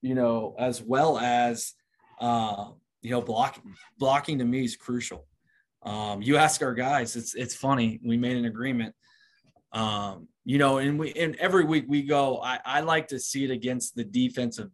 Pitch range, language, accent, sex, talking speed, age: 115-135 Hz, English, American, male, 185 wpm, 20-39